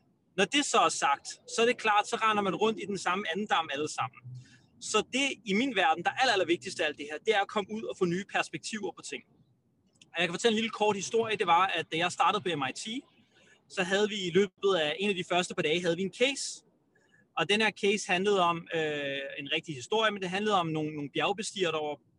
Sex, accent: male, native